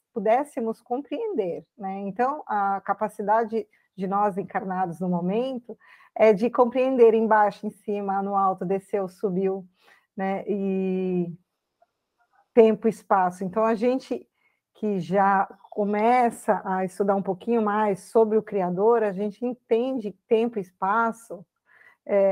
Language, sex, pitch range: Portuguese, female, 195-255 Hz